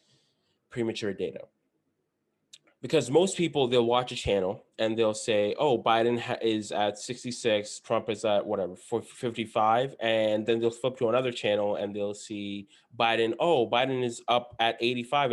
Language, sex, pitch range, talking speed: English, male, 105-125 Hz, 155 wpm